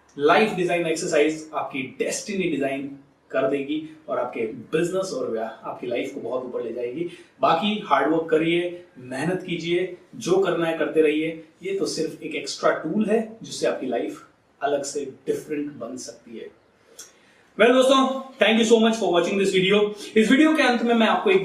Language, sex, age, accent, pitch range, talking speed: Hindi, male, 30-49, native, 165-215 Hz, 180 wpm